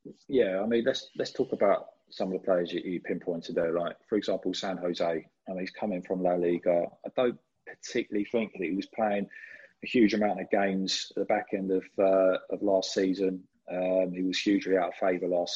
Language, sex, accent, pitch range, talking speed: English, male, British, 90-115 Hz, 220 wpm